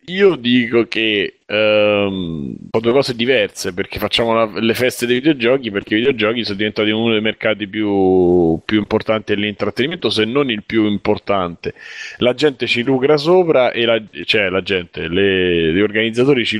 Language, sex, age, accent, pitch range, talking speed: Italian, male, 30-49, native, 95-110 Hz, 165 wpm